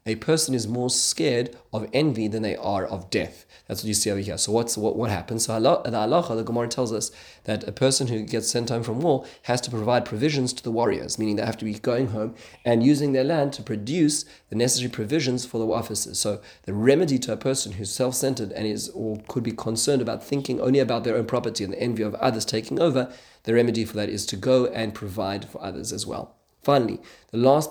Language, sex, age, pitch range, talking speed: English, male, 30-49, 110-125 Hz, 240 wpm